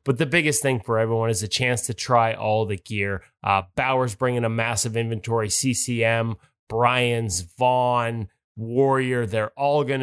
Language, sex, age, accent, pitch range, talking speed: English, male, 20-39, American, 115-140 Hz, 160 wpm